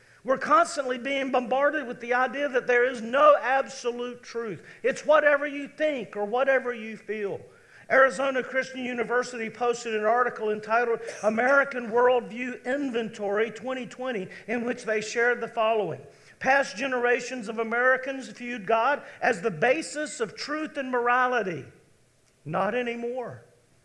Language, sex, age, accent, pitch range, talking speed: English, male, 50-69, American, 220-270 Hz, 135 wpm